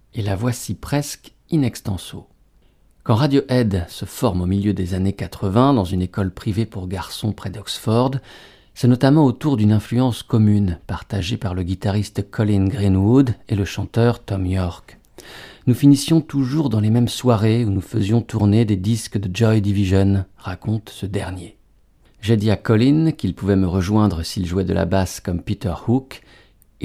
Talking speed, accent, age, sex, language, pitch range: 175 wpm, French, 50-69, male, French, 95-115 Hz